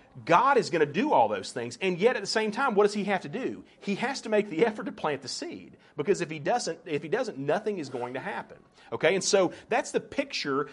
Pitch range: 145-205 Hz